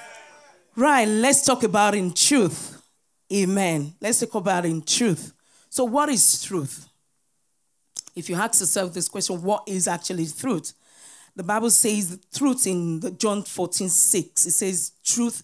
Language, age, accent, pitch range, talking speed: English, 40-59, Nigerian, 165-215 Hz, 150 wpm